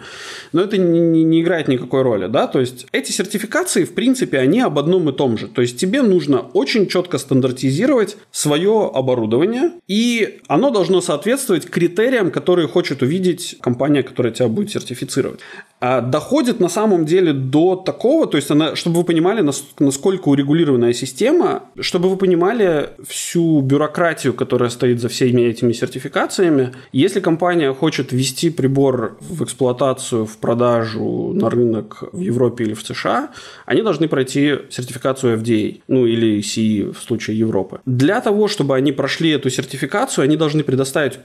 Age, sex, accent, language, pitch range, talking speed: 20-39, male, native, Russian, 125-175 Hz, 150 wpm